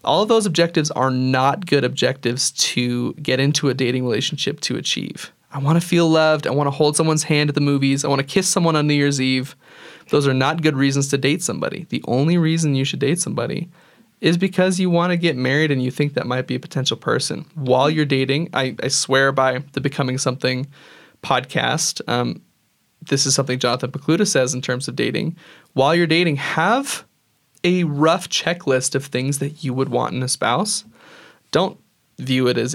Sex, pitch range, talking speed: male, 130-165 Hz, 205 wpm